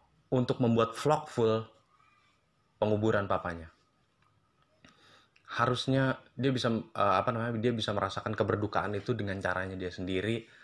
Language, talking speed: Indonesian, 115 wpm